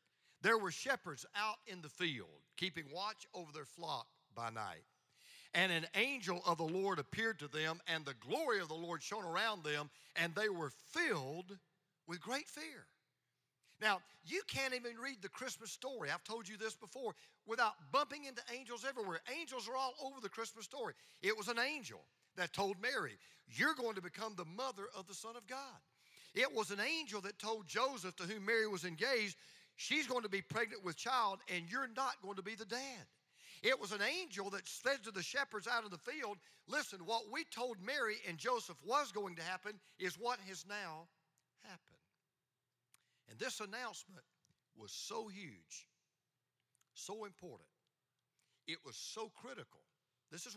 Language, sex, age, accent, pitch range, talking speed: English, male, 50-69, American, 170-240 Hz, 180 wpm